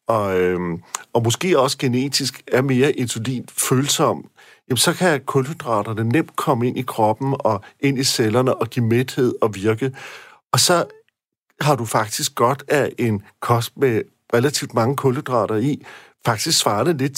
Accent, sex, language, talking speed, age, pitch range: native, male, Danish, 150 wpm, 50-69, 115-145 Hz